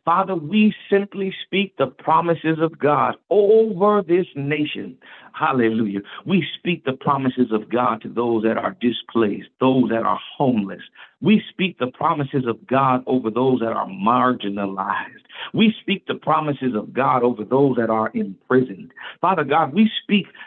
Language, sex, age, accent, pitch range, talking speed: English, male, 50-69, American, 115-155 Hz, 155 wpm